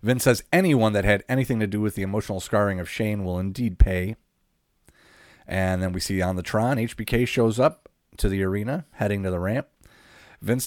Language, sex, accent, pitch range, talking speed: English, male, American, 95-125 Hz, 195 wpm